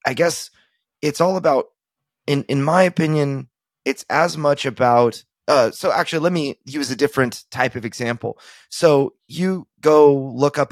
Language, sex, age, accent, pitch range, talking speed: English, male, 30-49, American, 120-155 Hz, 160 wpm